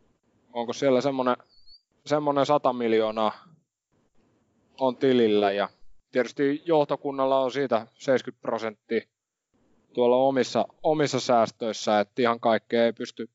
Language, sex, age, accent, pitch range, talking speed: Finnish, male, 20-39, native, 120-145 Hz, 105 wpm